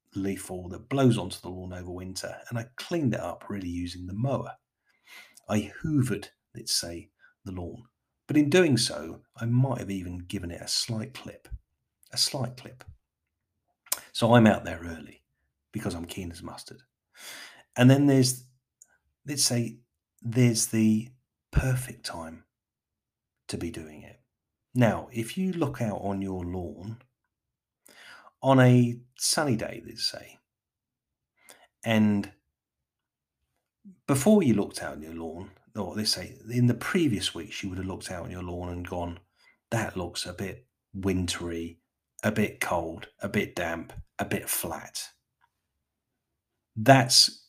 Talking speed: 150 wpm